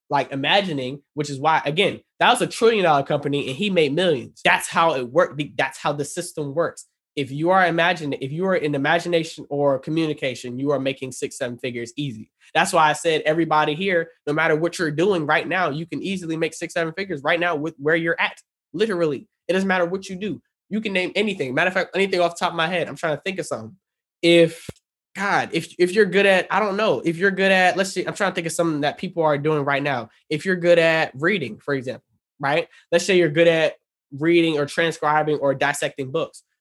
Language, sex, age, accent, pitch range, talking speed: English, male, 20-39, American, 150-180 Hz, 235 wpm